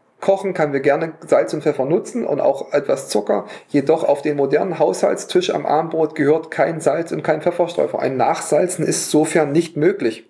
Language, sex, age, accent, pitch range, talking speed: German, male, 40-59, German, 140-175 Hz, 180 wpm